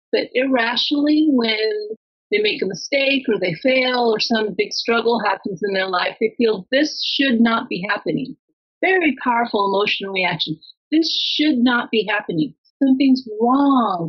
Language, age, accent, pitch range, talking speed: English, 40-59, American, 215-265 Hz, 155 wpm